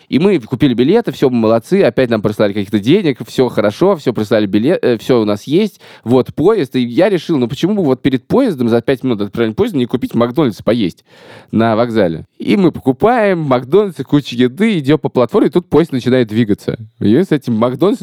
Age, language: 20-39, Russian